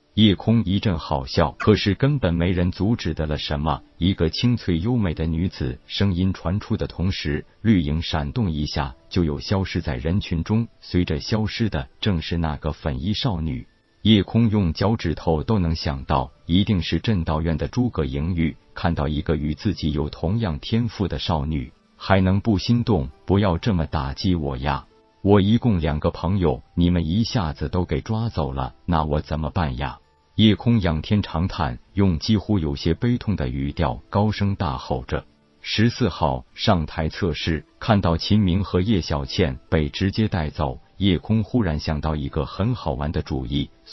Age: 50-69